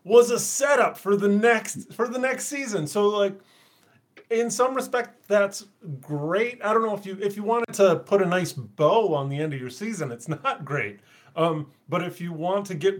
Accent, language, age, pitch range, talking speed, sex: American, English, 30-49, 145-195 Hz, 210 wpm, male